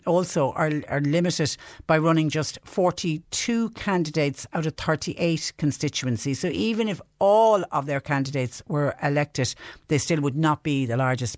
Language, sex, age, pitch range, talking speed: English, female, 60-79, 130-160 Hz, 165 wpm